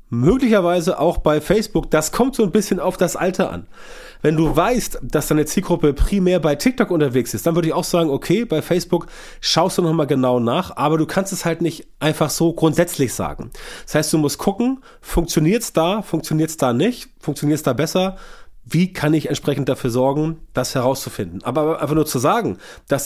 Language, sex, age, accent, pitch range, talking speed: German, male, 30-49, German, 130-175 Hz, 200 wpm